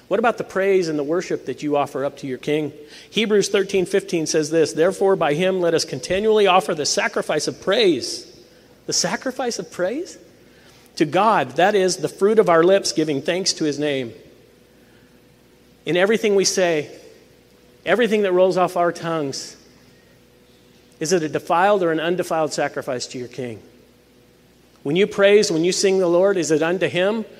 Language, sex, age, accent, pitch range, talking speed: English, male, 40-59, American, 145-185 Hz, 175 wpm